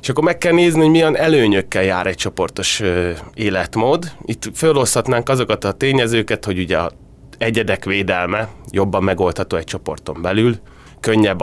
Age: 30-49